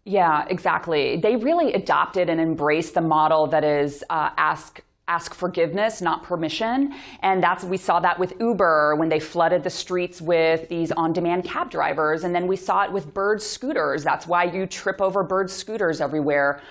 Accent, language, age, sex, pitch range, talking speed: American, English, 30-49, female, 165-205 Hz, 185 wpm